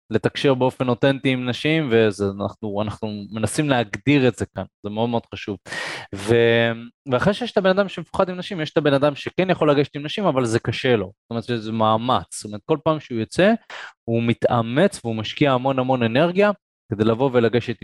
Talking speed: 190 wpm